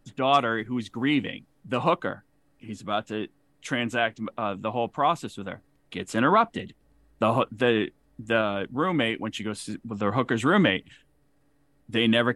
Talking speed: 145 wpm